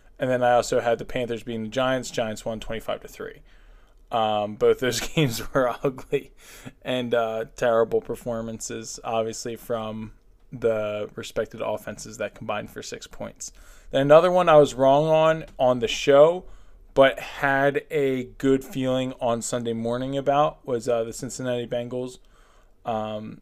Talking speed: 150 wpm